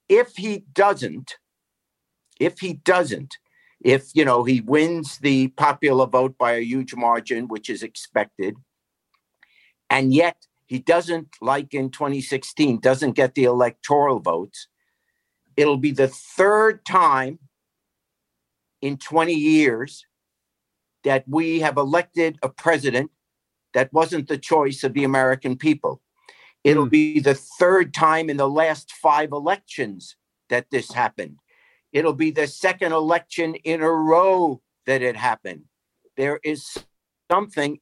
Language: English